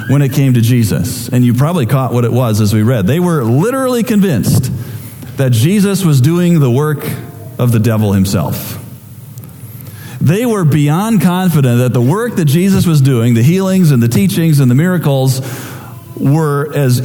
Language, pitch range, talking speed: English, 125-165 Hz, 175 wpm